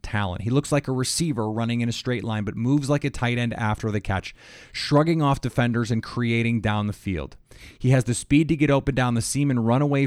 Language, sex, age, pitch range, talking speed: English, male, 30-49, 105-135 Hz, 245 wpm